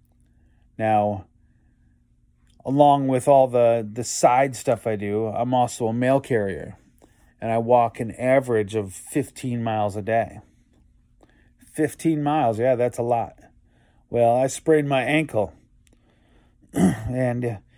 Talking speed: 125 wpm